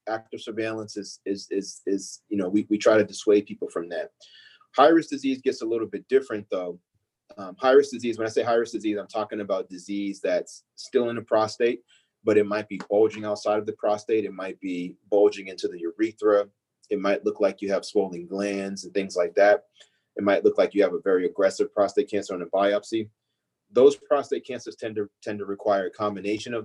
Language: English